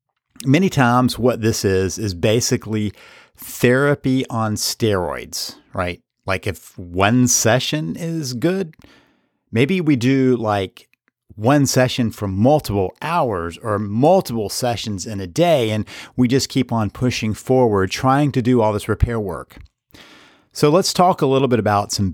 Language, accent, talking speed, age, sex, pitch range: English, American, 145 wpm, 50-69, male, 105-135 Hz